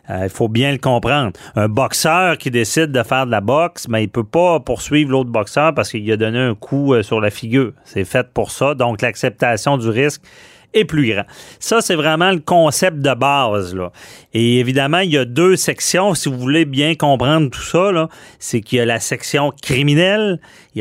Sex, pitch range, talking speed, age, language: male, 120-155 Hz, 215 wpm, 40-59, French